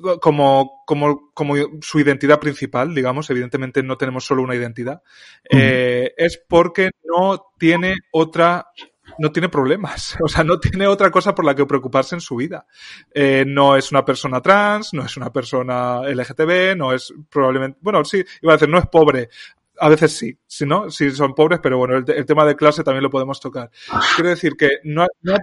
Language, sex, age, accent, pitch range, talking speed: Spanish, male, 20-39, Spanish, 135-170 Hz, 195 wpm